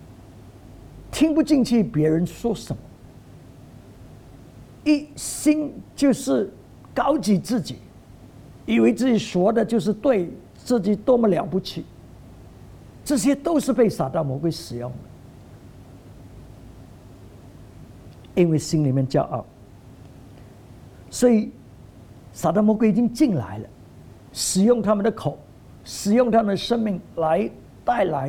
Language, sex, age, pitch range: English, male, 50-69, 130-220 Hz